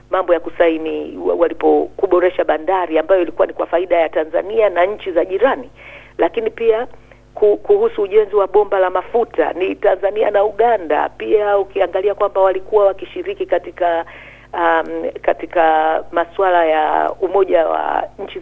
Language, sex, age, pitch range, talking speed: Swahili, female, 50-69, 165-230 Hz, 135 wpm